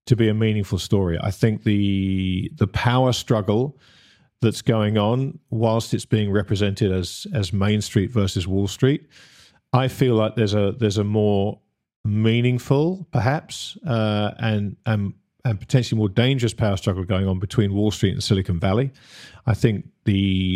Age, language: 40-59, English